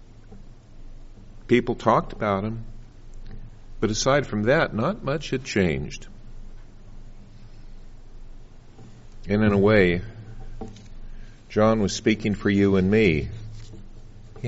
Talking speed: 100 wpm